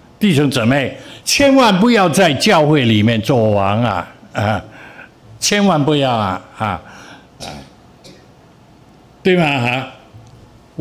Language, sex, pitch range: Chinese, male, 120-180 Hz